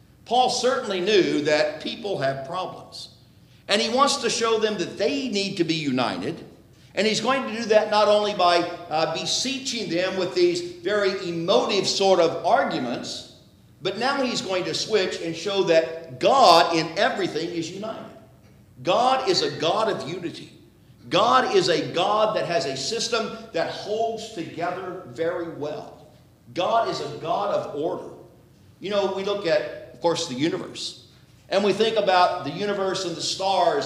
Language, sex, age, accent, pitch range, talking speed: English, male, 50-69, American, 160-215 Hz, 165 wpm